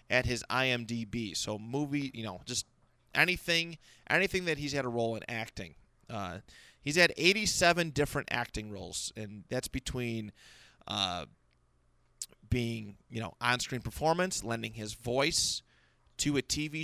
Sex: male